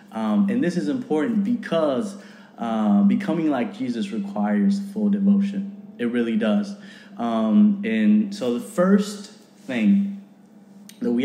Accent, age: American, 20-39